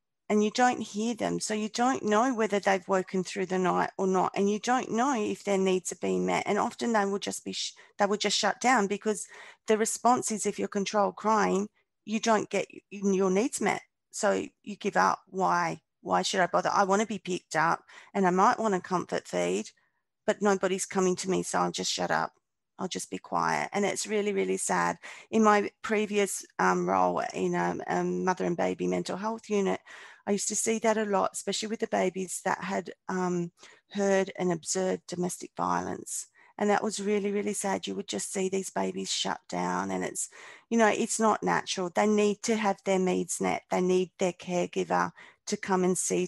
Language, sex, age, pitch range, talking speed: English, female, 30-49, 180-210 Hz, 210 wpm